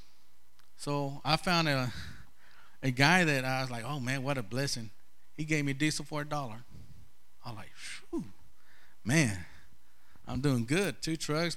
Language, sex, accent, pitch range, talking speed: English, male, American, 120-155 Hz, 165 wpm